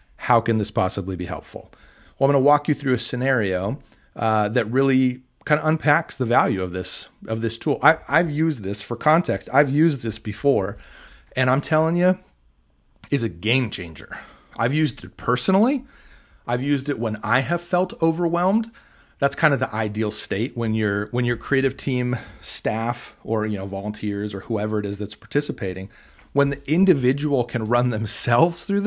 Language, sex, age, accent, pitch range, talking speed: English, male, 40-59, American, 105-145 Hz, 185 wpm